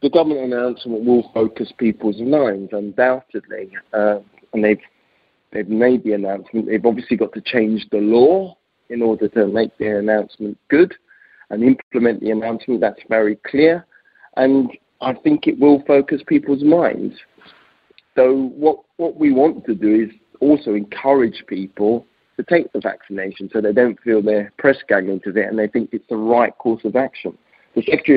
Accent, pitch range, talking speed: British, 105-130 Hz, 170 wpm